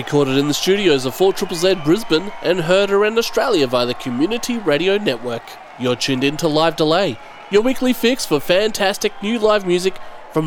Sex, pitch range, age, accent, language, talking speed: male, 160-240 Hz, 30-49, Australian, English, 180 wpm